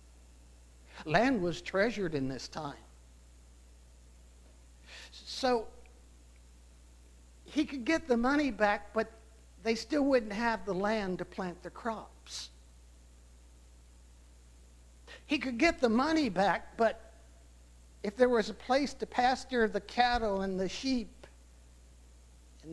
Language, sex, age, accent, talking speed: English, male, 60-79, American, 115 wpm